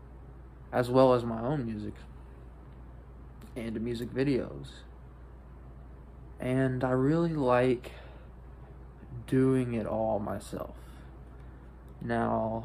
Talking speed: 85 wpm